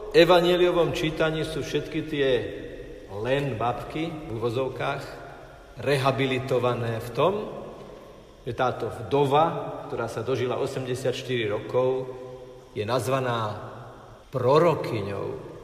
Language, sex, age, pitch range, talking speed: Slovak, male, 50-69, 120-150 Hz, 90 wpm